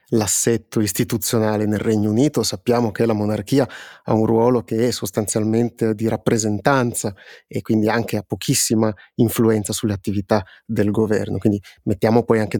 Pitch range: 110-130 Hz